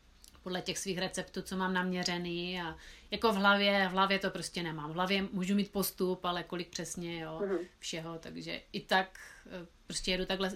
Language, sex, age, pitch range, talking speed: Czech, female, 30-49, 180-210 Hz, 180 wpm